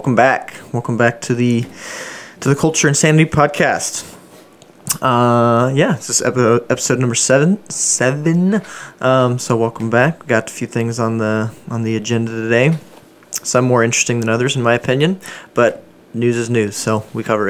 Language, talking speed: English, 165 wpm